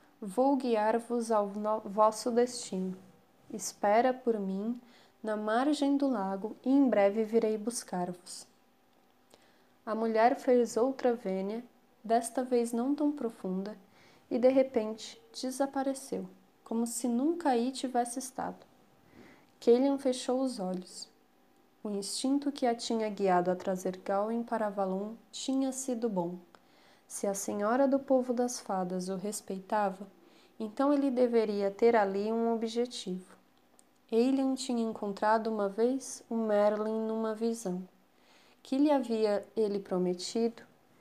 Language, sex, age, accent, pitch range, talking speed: Portuguese, female, 20-39, Brazilian, 205-250 Hz, 125 wpm